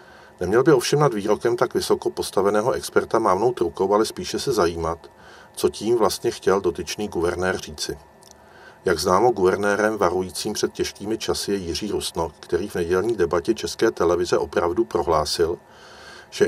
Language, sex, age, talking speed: Czech, male, 50-69, 150 wpm